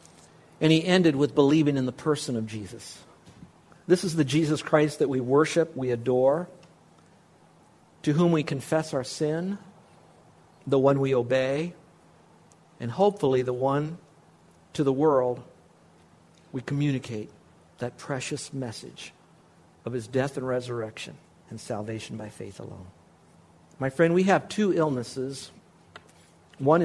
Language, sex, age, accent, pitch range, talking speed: English, male, 50-69, American, 130-160 Hz, 130 wpm